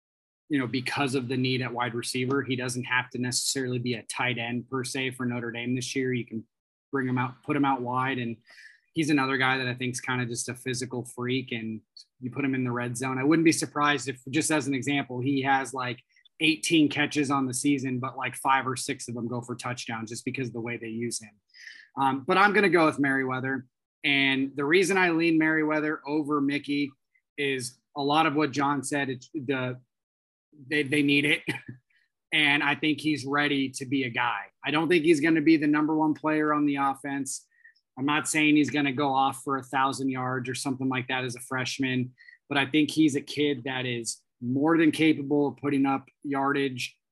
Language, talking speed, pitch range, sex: English, 225 wpm, 125-150 Hz, male